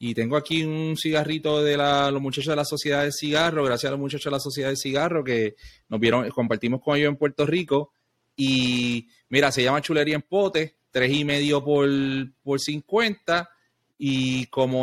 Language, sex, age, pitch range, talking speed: English, male, 30-49, 125-155 Hz, 185 wpm